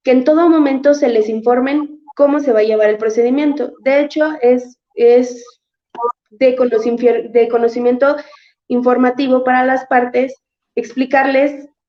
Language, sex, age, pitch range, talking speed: Spanish, female, 20-39, 230-300 Hz, 125 wpm